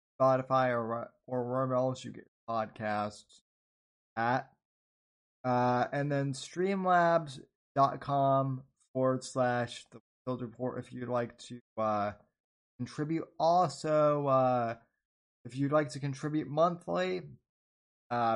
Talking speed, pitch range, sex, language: 110 wpm, 120-145 Hz, male, English